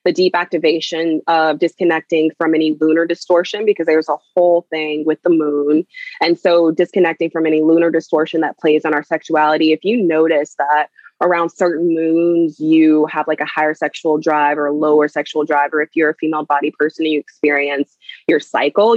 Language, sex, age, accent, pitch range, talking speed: English, female, 20-39, American, 155-180 Hz, 190 wpm